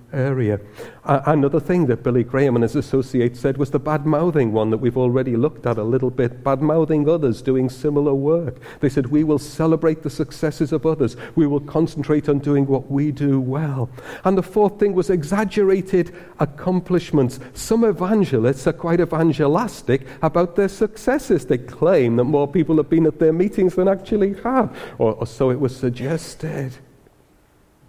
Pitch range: 125-160 Hz